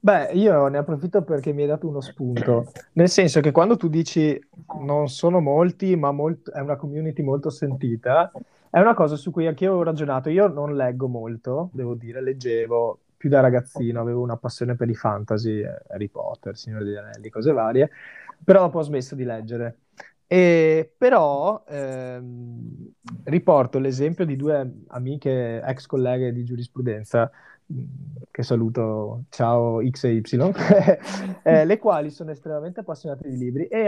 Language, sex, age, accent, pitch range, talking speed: Italian, male, 20-39, native, 125-165 Hz, 155 wpm